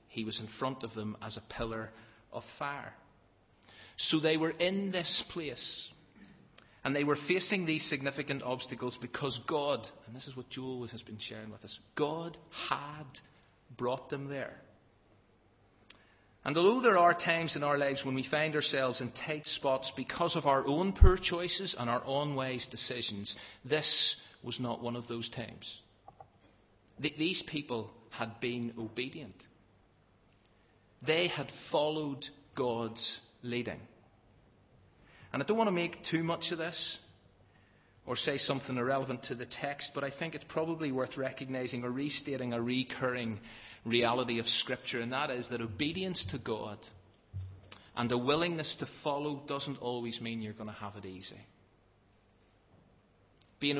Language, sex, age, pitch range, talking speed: English, male, 40-59, 110-145 Hz, 155 wpm